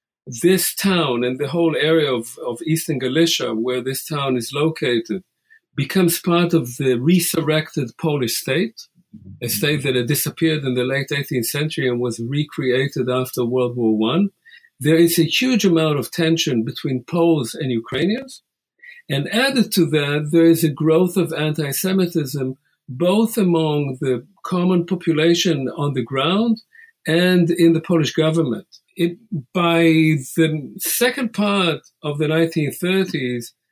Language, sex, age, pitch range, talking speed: English, male, 50-69, 135-175 Hz, 145 wpm